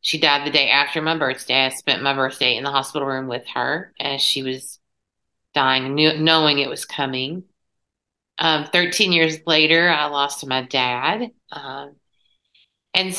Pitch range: 140-160 Hz